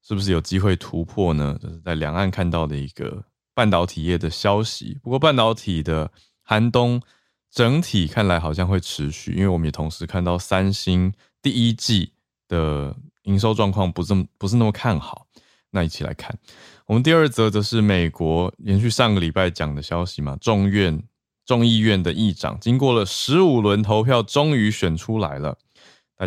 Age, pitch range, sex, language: 20-39, 85-110 Hz, male, Chinese